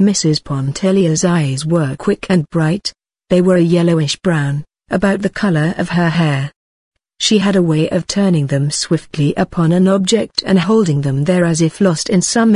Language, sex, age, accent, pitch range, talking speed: English, female, 40-59, British, 160-195 Hz, 175 wpm